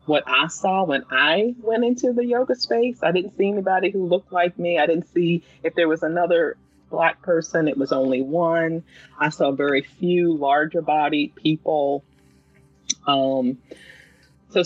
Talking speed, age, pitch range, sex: 165 wpm, 30-49, 130-180 Hz, female